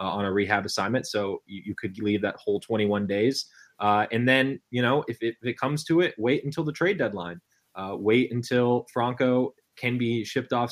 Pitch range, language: 105-120 Hz, English